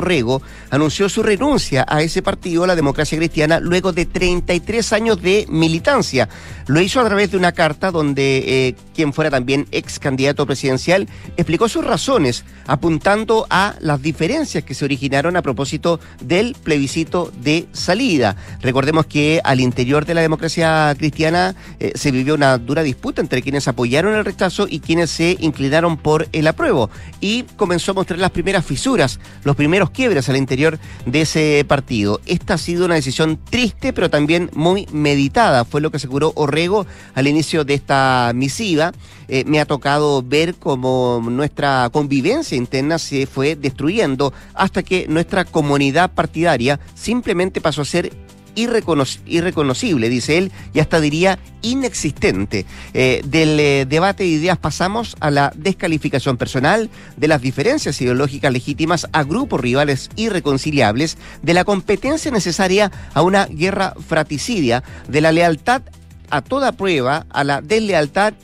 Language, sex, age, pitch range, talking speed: Spanish, male, 40-59, 140-180 Hz, 150 wpm